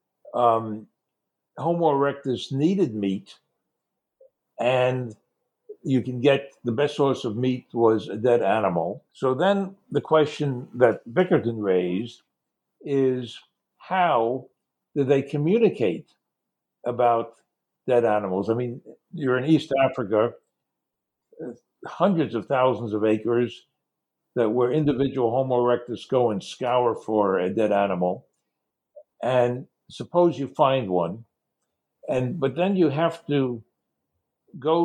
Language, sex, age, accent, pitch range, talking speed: English, male, 60-79, American, 115-150 Hz, 115 wpm